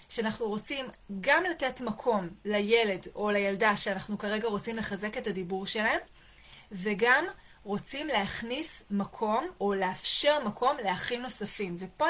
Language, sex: Hebrew, female